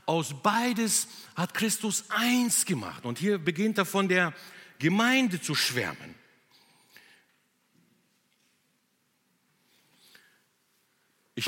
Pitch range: 125-180 Hz